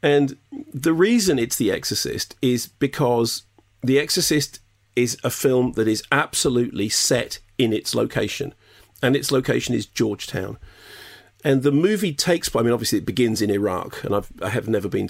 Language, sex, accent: English, male, British